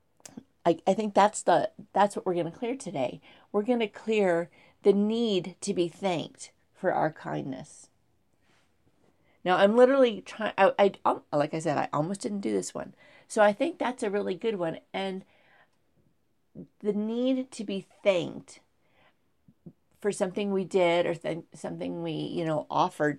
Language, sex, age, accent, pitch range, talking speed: English, female, 40-59, American, 165-210 Hz, 160 wpm